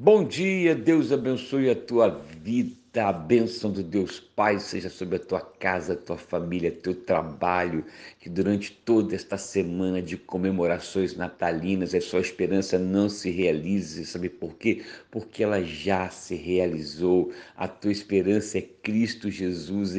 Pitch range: 90-105 Hz